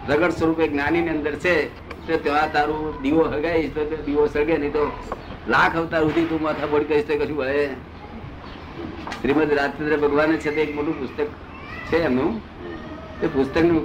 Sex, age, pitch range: male, 50-69, 140-165 Hz